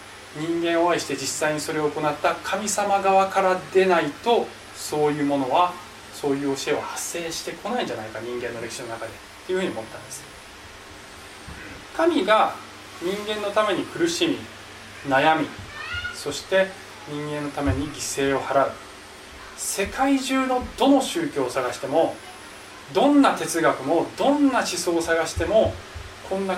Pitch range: 130-195 Hz